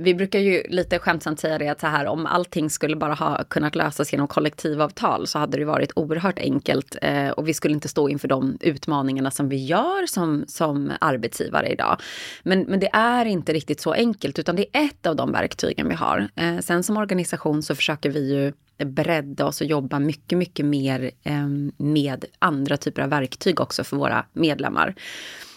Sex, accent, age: female, native, 20-39